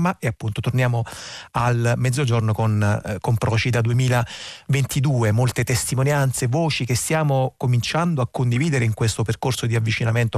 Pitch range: 110-130 Hz